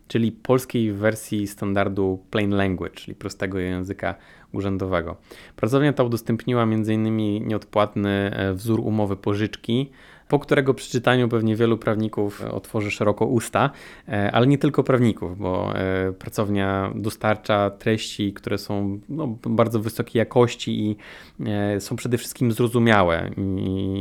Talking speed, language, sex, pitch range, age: 115 wpm, Polish, male, 95-110 Hz, 20-39